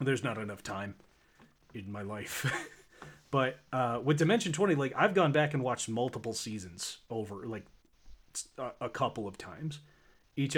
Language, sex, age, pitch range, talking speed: English, male, 30-49, 110-140 Hz, 160 wpm